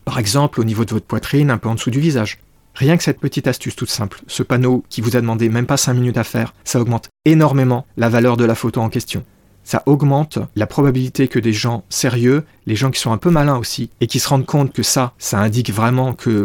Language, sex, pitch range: French, male, 115-140 Hz